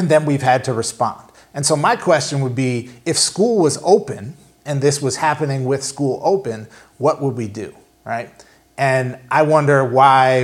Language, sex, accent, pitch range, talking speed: English, male, American, 120-150 Hz, 185 wpm